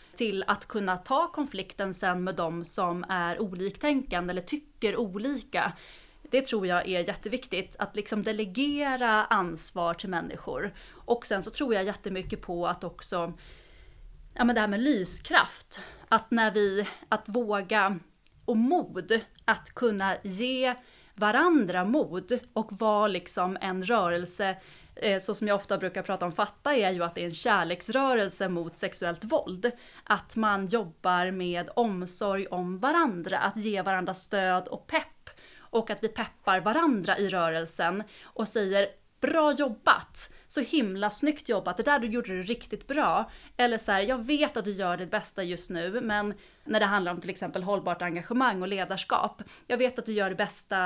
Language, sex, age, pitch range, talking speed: Swedish, female, 30-49, 185-240 Hz, 165 wpm